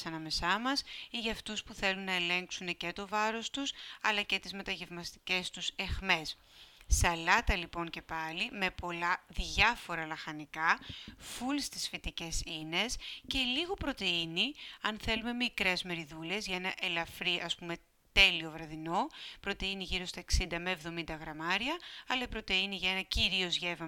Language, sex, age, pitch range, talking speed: Greek, female, 30-49, 170-210 Hz, 150 wpm